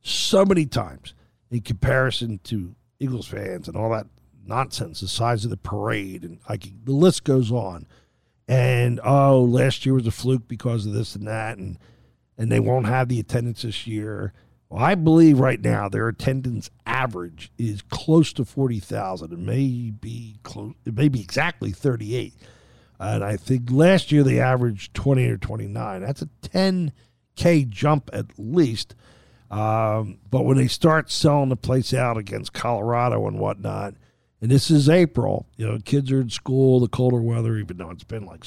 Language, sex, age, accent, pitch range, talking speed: English, male, 50-69, American, 110-135 Hz, 175 wpm